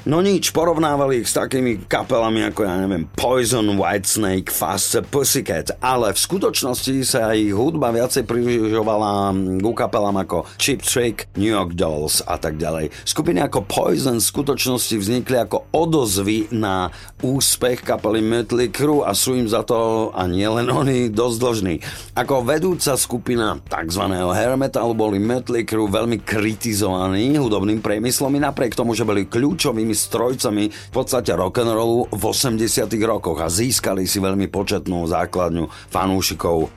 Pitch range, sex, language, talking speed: 95-120 Hz, male, Slovak, 145 wpm